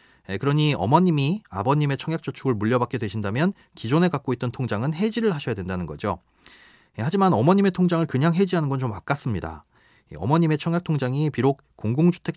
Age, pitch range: 30-49, 115-165 Hz